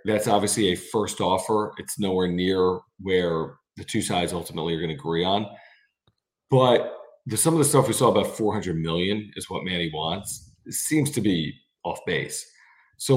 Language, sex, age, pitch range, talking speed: English, male, 40-59, 90-115 Hz, 180 wpm